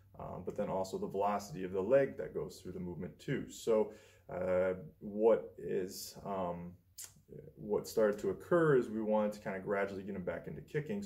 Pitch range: 95-115 Hz